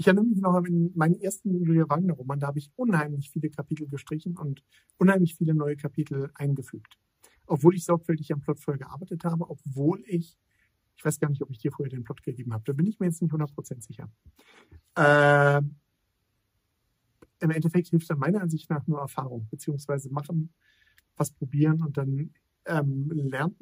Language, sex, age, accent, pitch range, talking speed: German, male, 50-69, German, 135-165 Hz, 180 wpm